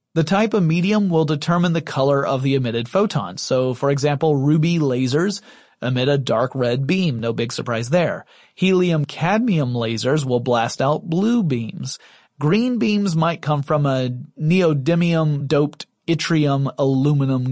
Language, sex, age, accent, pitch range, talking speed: English, male, 30-49, American, 130-170 Hz, 140 wpm